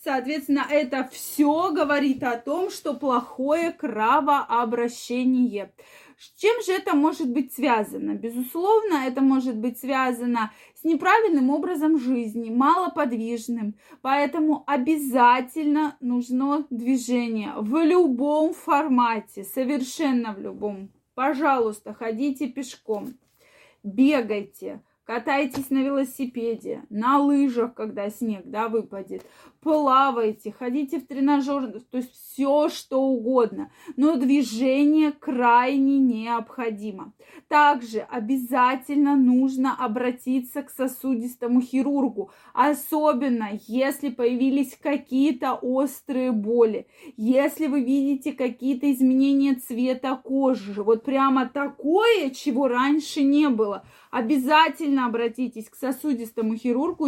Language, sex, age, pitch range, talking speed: Russian, female, 20-39, 245-295 Hz, 100 wpm